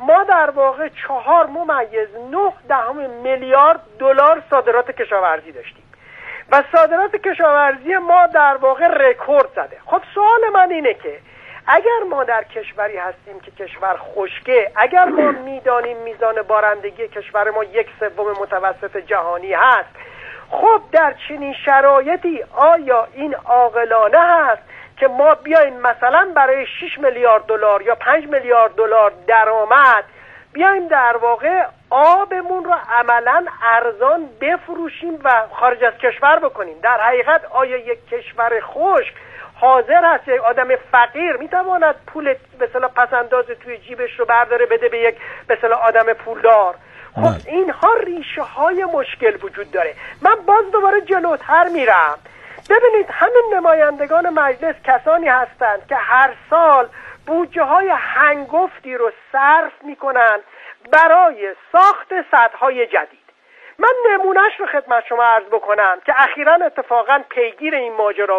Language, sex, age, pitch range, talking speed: Persian, male, 40-59, 235-340 Hz, 135 wpm